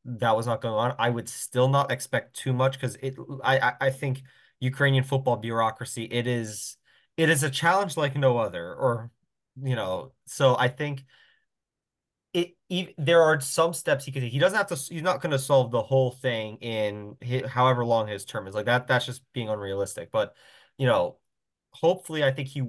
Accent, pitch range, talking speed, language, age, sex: American, 110-135 Hz, 200 wpm, English, 20-39, male